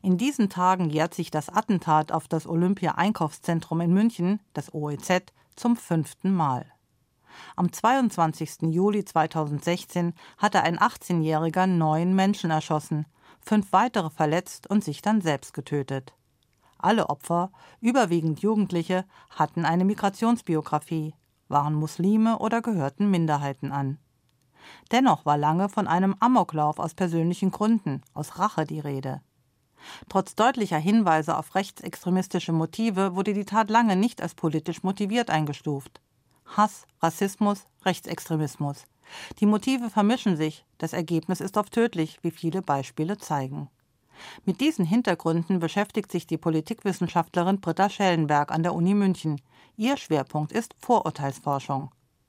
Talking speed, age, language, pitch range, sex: 125 wpm, 40-59, German, 155-200 Hz, female